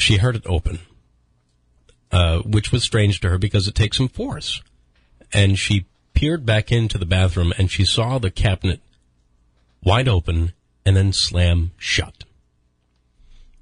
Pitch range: 80-110 Hz